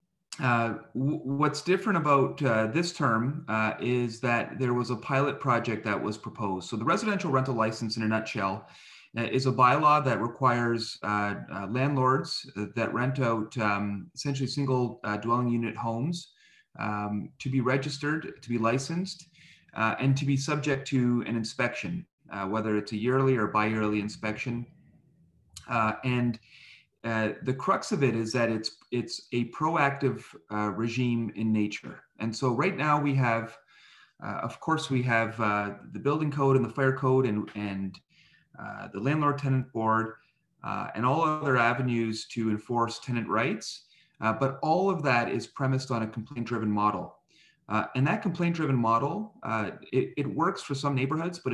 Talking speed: 170 wpm